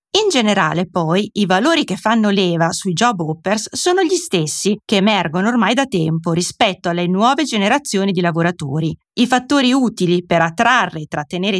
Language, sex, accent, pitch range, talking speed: Italian, female, native, 180-255 Hz, 165 wpm